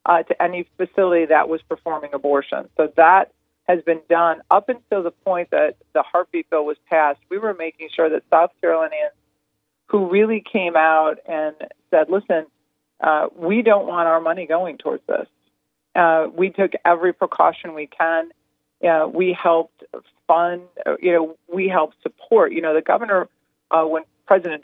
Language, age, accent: English, 40-59, American